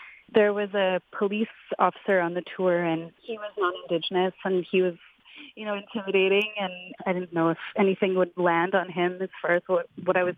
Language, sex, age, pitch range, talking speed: English, female, 30-49, 175-200 Hz, 200 wpm